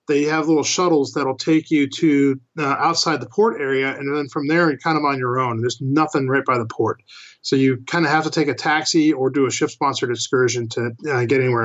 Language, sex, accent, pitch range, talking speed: English, male, American, 135-165 Hz, 245 wpm